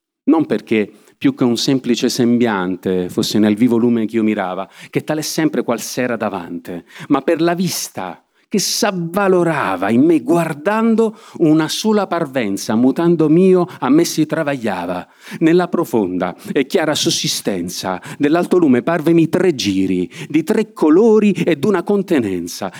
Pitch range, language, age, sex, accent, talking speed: 120-185 Hz, Italian, 40-59, male, native, 140 wpm